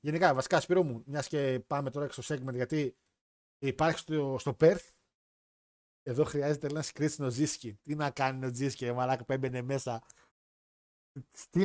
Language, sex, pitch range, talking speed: Greek, male, 130-180 Hz, 155 wpm